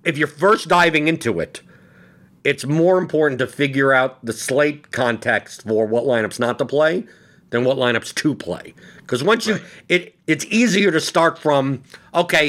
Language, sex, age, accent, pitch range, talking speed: English, male, 50-69, American, 120-165 Hz, 175 wpm